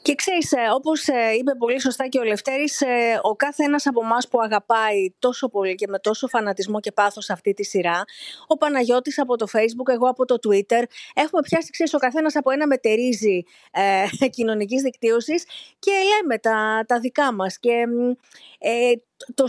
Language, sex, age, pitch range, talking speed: Greek, female, 30-49, 220-275 Hz, 170 wpm